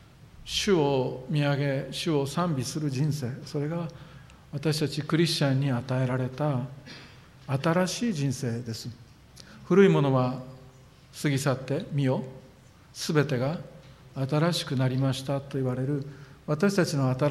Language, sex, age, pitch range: Japanese, male, 50-69, 130-170 Hz